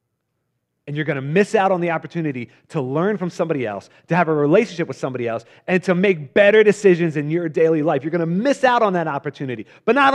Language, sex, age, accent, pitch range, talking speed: English, male, 30-49, American, 130-190 Hz, 235 wpm